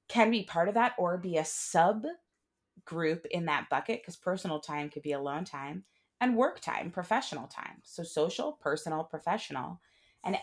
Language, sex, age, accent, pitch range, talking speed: English, female, 30-49, American, 155-205 Hz, 175 wpm